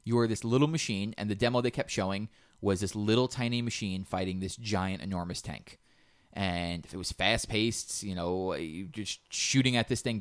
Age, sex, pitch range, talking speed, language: 20-39, male, 95-120 Hz, 200 wpm, English